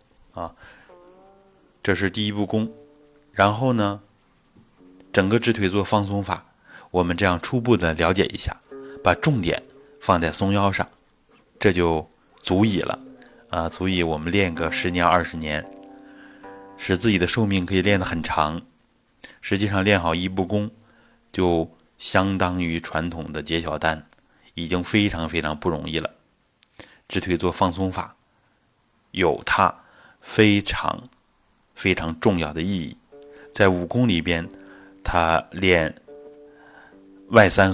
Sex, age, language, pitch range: male, 30-49, Chinese, 85-110 Hz